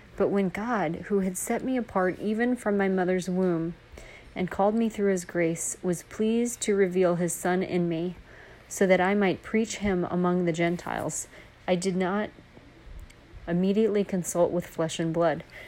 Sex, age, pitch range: female, 40-59, 175-200 Hz